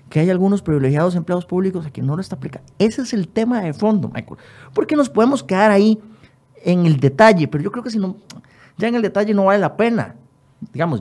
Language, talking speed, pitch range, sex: Spanish, 230 wpm, 125-180 Hz, male